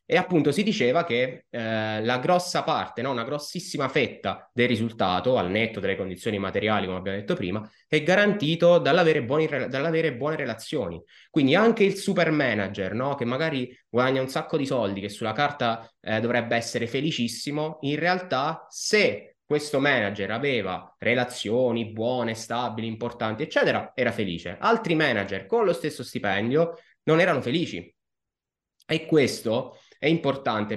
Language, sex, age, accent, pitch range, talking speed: Italian, male, 20-39, native, 115-155 Hz, 145 wpm